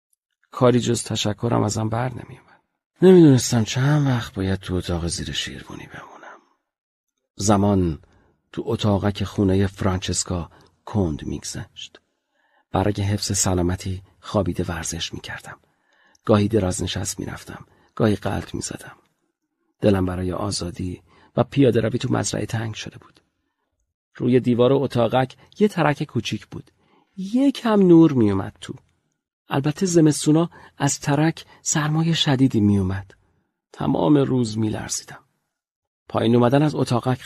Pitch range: 100-135 Hz